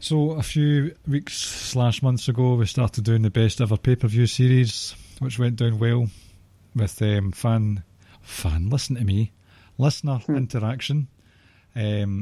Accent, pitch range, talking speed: British, 100-125 Hz, 140 wpm